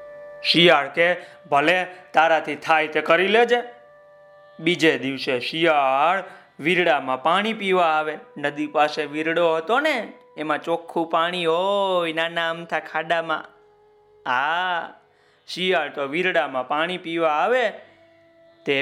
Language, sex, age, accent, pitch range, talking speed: Gujarati, male, 30-49, native, 160-230 Hz, 110 wpm